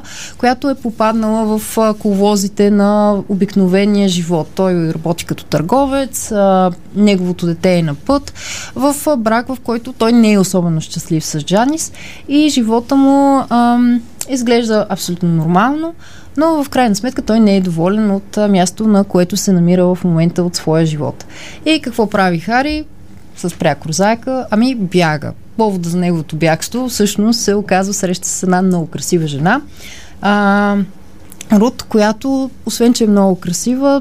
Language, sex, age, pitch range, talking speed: Bulgarian, female, 20-39, 185-235 Hz, 145 wpm